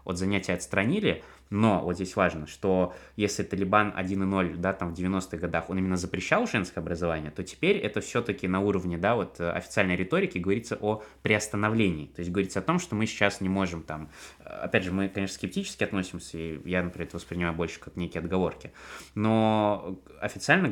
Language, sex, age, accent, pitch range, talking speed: Russian, male, 20-39, native, 85-105 Hz, 175 wpm